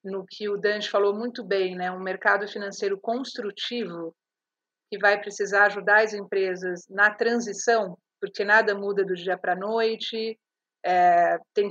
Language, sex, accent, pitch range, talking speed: Portuguese, female, Brazilian, 200-230 Hz, 150 wpm